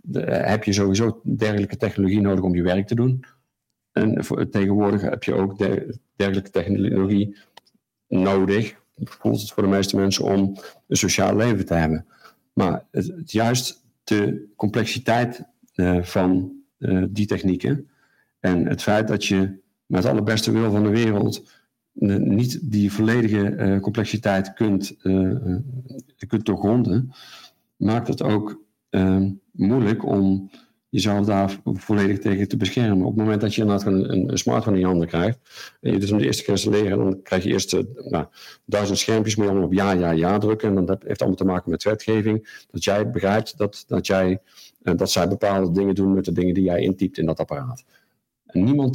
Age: 50-69